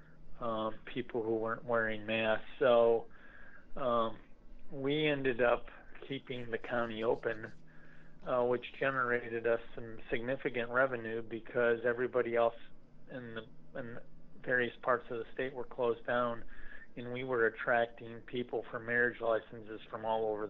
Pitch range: 110-120 Hz